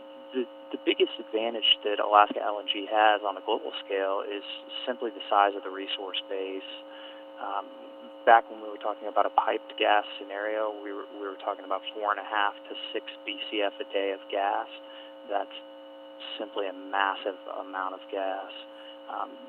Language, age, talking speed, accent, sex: English, 20-39, 160 wpm, American, male